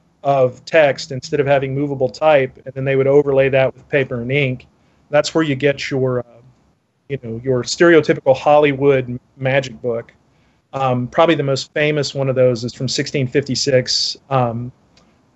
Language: English